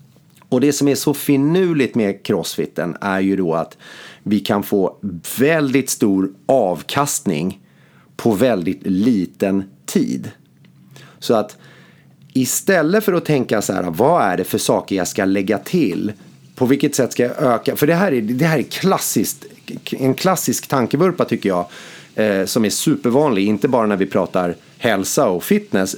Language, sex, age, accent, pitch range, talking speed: Swedish, male, 30-49, native, 100-155 Hz, 160 wpm